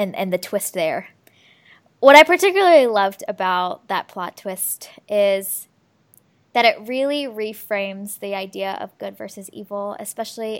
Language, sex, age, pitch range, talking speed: English, female, 10-29, 200-230 Hz, 140 wpm